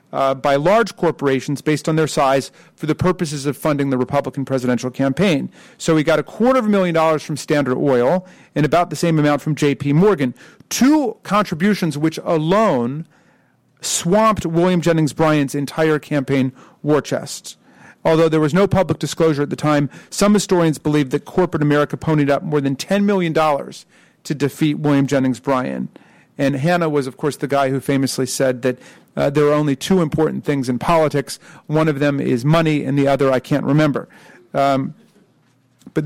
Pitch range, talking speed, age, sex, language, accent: 140-170 Hz, 180 wpm, 40-59, male, English, American